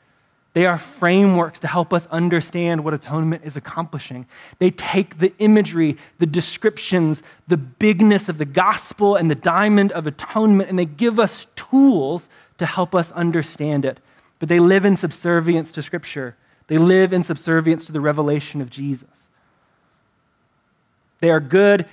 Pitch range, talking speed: 150-190 Hz, 155 wpm